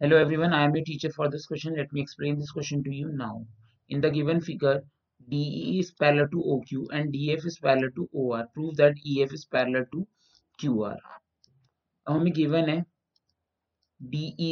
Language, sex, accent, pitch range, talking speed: English, male, Indian, 120-175 Hz, 180 wpm